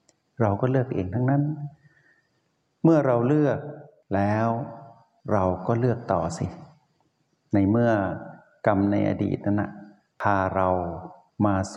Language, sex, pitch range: Thai, male, 95-120 Hz